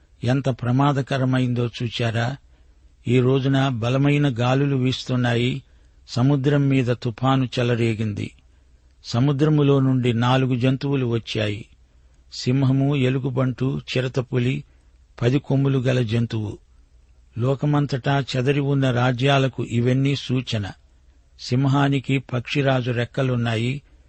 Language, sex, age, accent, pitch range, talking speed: Telugu, male, 50-69, native, 110-135 Hz, 75 wpm